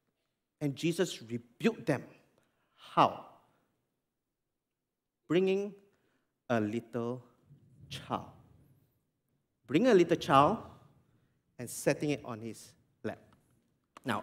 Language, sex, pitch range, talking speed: English, male, 120-190 Hz, 85 wpm